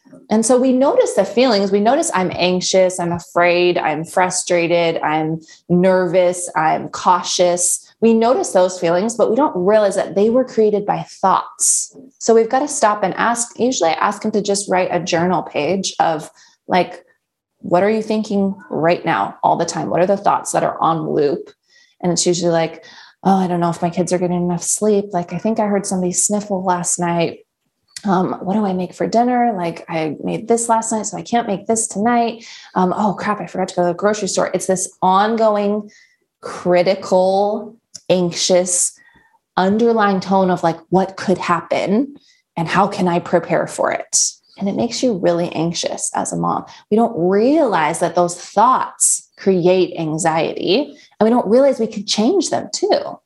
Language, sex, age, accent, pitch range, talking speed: English, female, 20-39, American, 175-215 Hz, 185 wpm